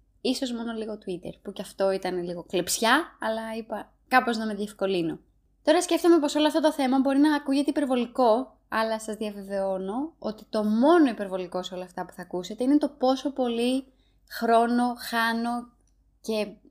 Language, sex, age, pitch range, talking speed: Greek, female, 20-39, 200-270 Hz, 170 wpm